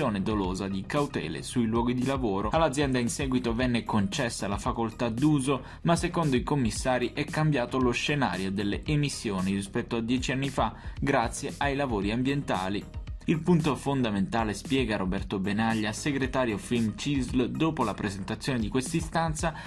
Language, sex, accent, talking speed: Italian, male, native, 145 wpm